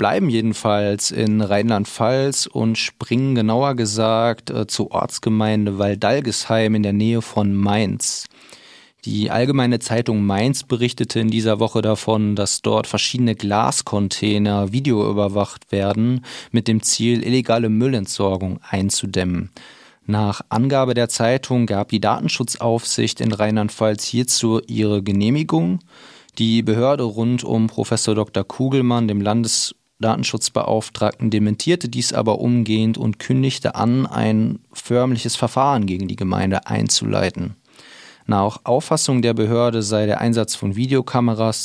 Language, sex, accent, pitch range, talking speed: German, male, German, 105-120 Hz, 120 wpm